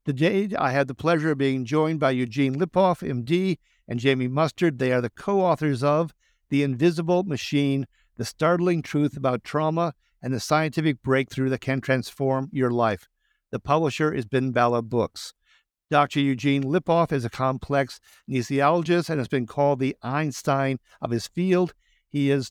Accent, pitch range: American, 130-160 Hz